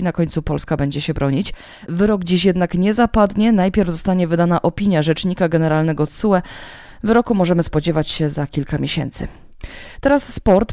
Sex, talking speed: female, 150 wpm